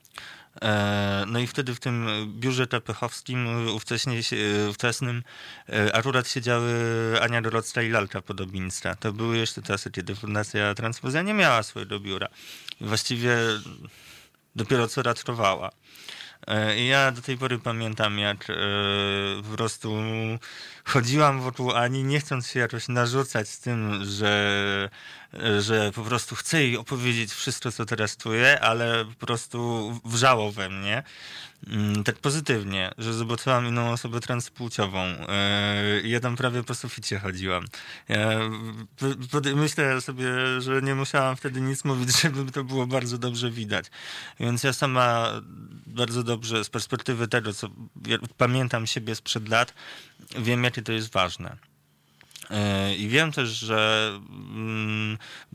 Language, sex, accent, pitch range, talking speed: Polish, male, native, 105-125 Hz, 125 wpm